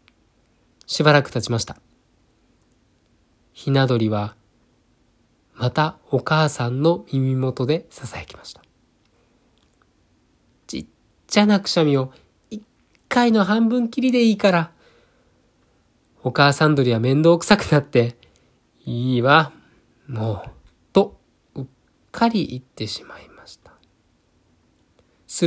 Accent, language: native, Japanese